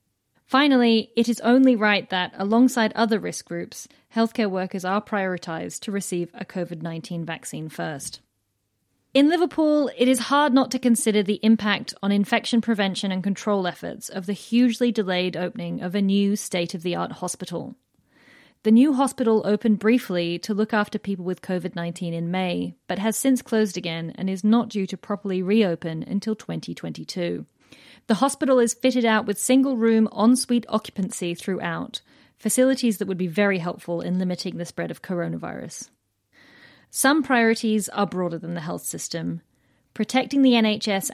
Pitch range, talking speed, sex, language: 175-225 Hz, 155 wpm, female, English